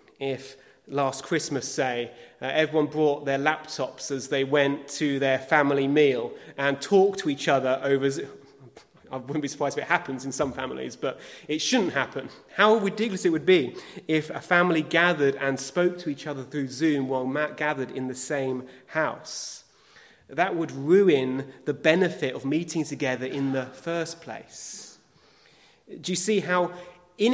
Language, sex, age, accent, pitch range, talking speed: English, male, 30-49, British, 135-175 Hz, 165 wpm